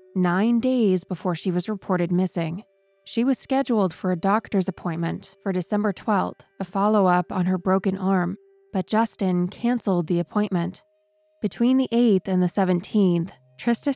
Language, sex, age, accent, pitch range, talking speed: English, female, 20-39, American, 180-225 Hz, 150 wpm